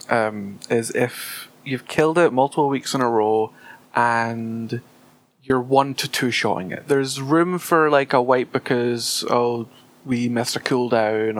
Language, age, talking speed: English, 20-39, 160 wpm